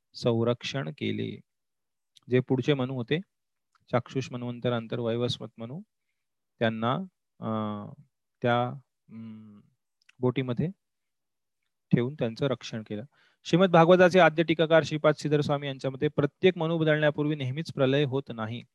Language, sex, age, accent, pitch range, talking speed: Marathi, male, 30-49, native, 120-155 Hz, 75 wpm